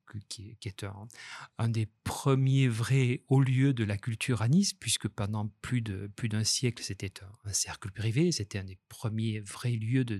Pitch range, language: 105-130 Hz, French